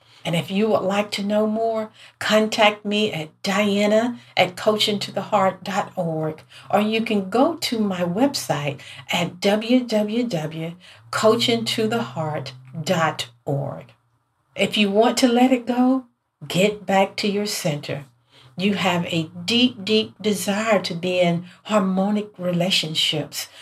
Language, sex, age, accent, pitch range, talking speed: English, female, 50-69, American, 160-215 Hz, 115 wpm